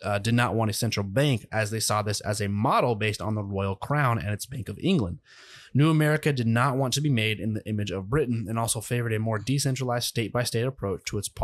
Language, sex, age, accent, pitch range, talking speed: English, male, 20-39, American, 105-125 Hz, 245 wpm